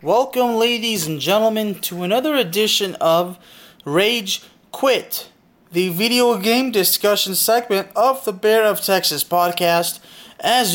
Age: 20-39